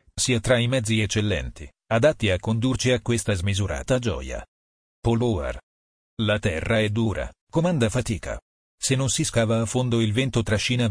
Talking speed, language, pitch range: 155 wpm, Italian, 90-120 Hz